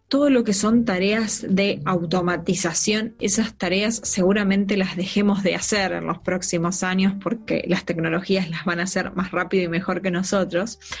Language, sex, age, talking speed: Spanish, female, 20-39, 170 wpm